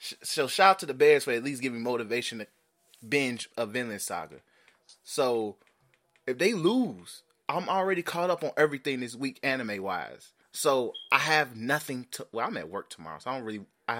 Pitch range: 105-140 Hz